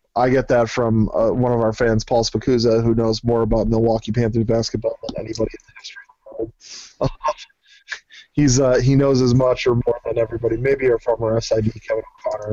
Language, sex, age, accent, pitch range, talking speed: English, male, 20-39, American, 115-145 Hz, 200 wpm